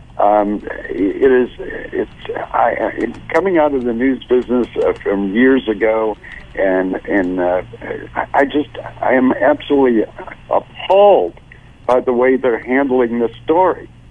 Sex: male